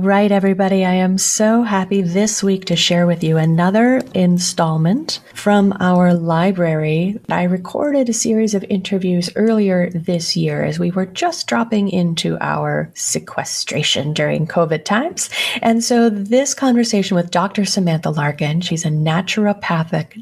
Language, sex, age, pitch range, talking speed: English, female, 30-49, 170-210 Hz, 140 wpm